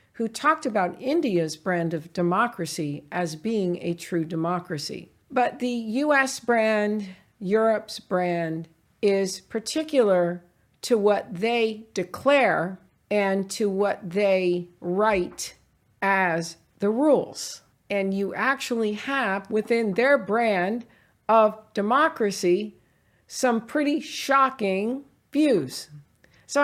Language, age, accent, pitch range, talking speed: English, 50-69, American, 180-245 Hz, 105 wpm